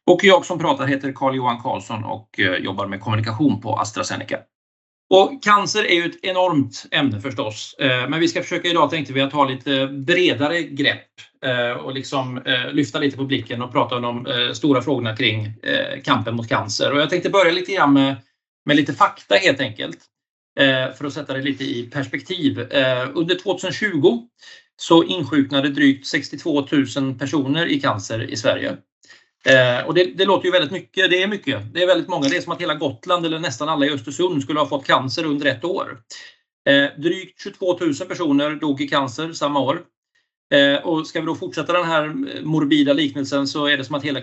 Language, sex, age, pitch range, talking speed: Swedish, male, 30-49, 135-175 Hz, 185 wpm